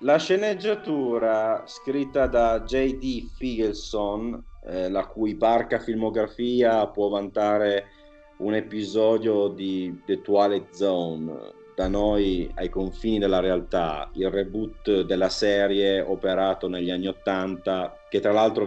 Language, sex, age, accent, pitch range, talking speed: Italian, male, 30-49, native, 95-145 Hz, 115 wpm